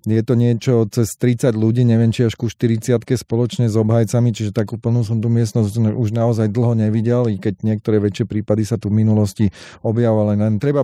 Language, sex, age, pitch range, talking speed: Slovak, male, 30-49, 105-120 Hz, 195 wpm